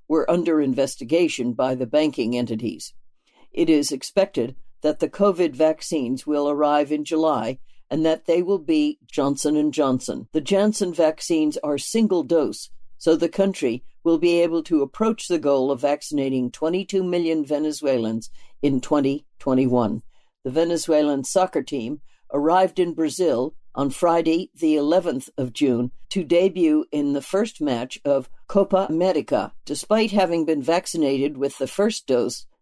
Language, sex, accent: English, female, American